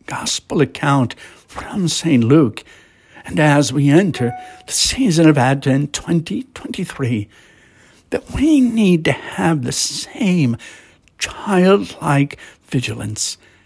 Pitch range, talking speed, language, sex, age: 115-170 Hz, 100 wpm, English, male, 60-79